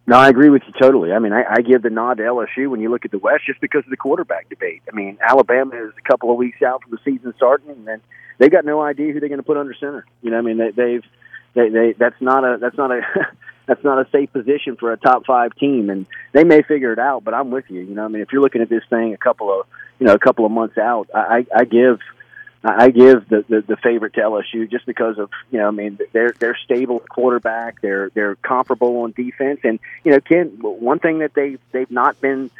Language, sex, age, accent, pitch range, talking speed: English, male, 40-59, American, 115-140 Hz, 270 wpm